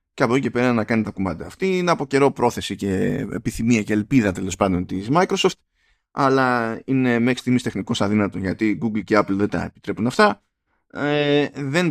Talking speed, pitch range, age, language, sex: 190 wpm, 100-130 Hz, 20-39, Greek, male